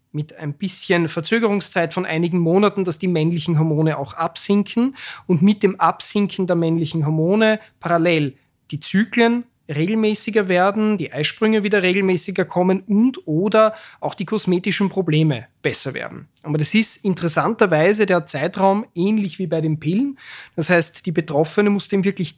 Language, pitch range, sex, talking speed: German, 160-200 Hz, male, 150 wpm